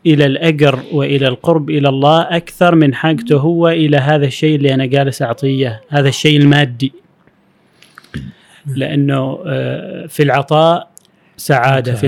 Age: 30-49